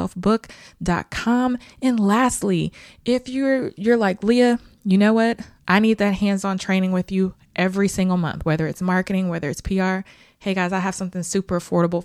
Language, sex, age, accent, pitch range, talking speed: English, female, 20-39, American, 180-215 Hz, 175 wpm